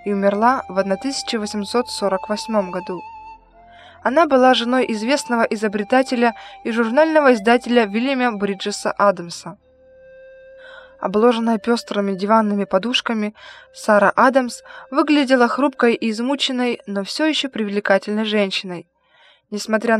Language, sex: Russian, female